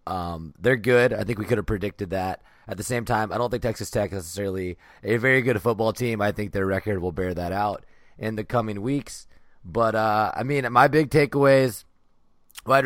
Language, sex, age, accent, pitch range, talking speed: English, male, 30-49, American, 95-120 Hz, 215 wpm